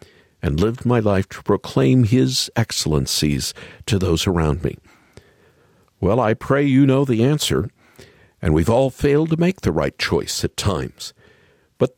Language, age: English, 50-69